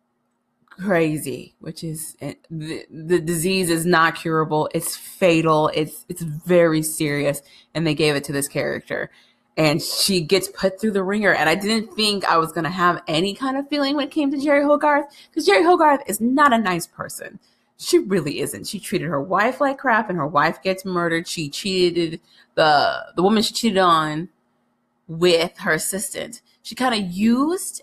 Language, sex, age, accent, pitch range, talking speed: English, female, 30-49, American, 160-225 Hz, 180 wpm